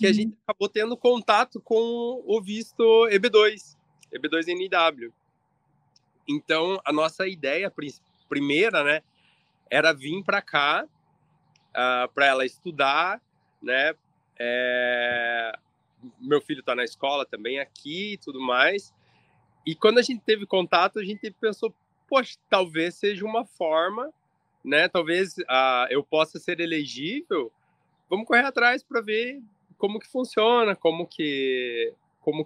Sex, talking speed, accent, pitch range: male, 130 wpm, Brazilian, 145-205 Hz